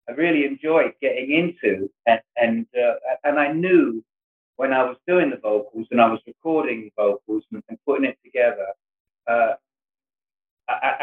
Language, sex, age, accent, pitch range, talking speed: English, male, 40-59, British, 115-155 Hz, 160 wpm